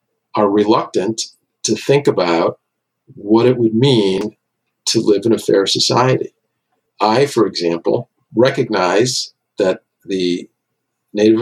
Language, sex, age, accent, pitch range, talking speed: English, male, 50-69, American, 95-120 Hz, 115 wpm